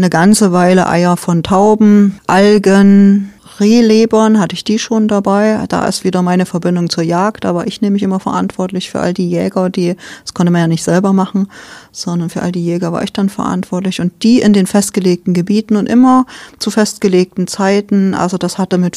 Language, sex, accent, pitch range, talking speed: German, female, German, 175-210 Hz, 195 wpm